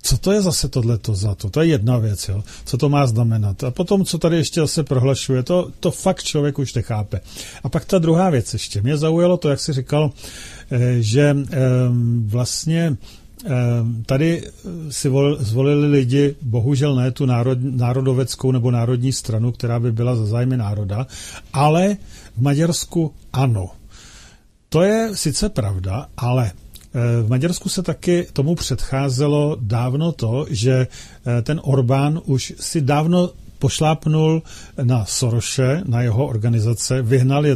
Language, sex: Czech, male